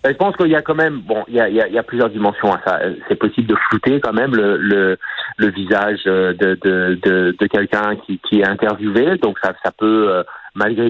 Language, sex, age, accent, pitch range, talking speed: French, male, 40-59, French, 100-120 Hz, 205 wpm